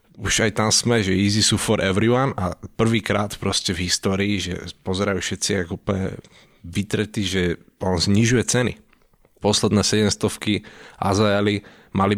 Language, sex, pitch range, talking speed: Slovak, male, 95-115 Hz, 120 wpm